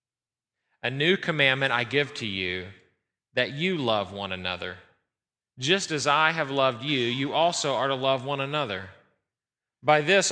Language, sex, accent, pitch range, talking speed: English, male, American, 110-140 Hz, 155 wpm